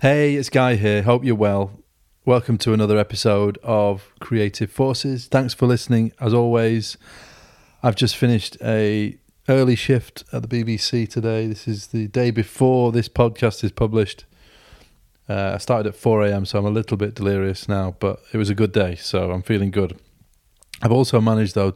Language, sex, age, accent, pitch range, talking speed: English, male, 30-49, British, 100-115 Hz, 175 wpm